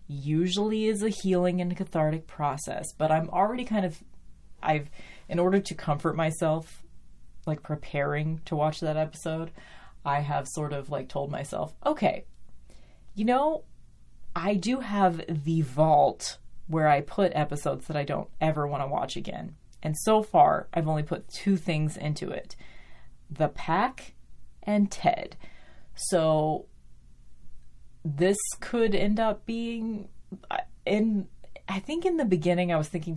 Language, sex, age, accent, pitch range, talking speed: English, female, 30-49, American, 150-185 Hz, 145 wpm